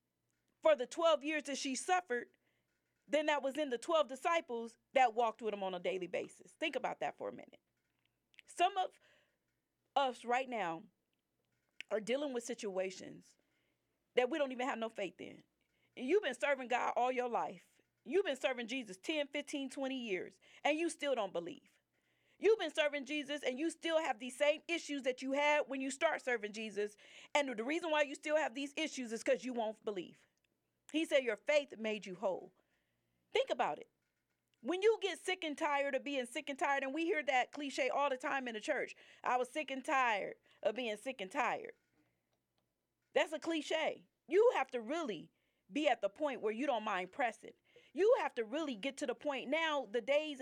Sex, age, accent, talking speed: female, 40-59, American, 200 wpm